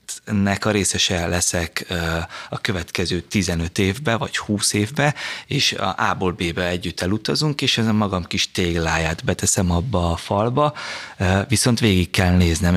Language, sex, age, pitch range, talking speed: Hungarian, male, 30-49, 90-110 Hz, 135 wpm